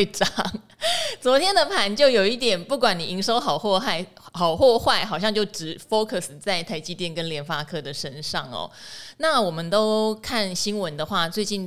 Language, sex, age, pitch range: Chinese, female, 20-39, 170-230 Hz